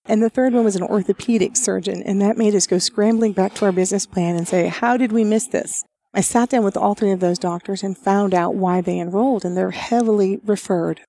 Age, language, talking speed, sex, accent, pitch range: 40-59, English, 245 wpm, female, American, 190-235 Hz